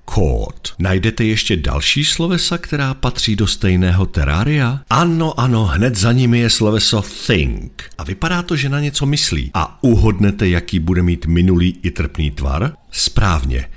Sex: male